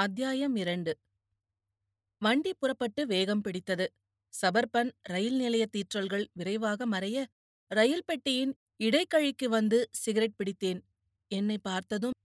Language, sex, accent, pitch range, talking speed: Tamil, female, native, 185-240 Hz, 100 wpm